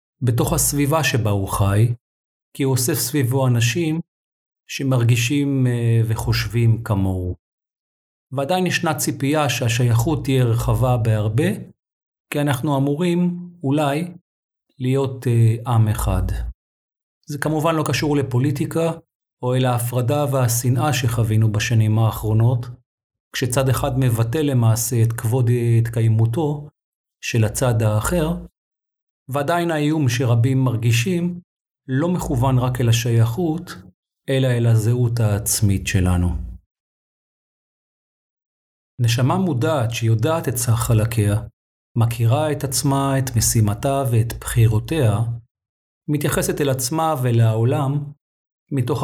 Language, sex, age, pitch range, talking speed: Hebrew, male, 40-59, 115-145 Hz, 105 wpm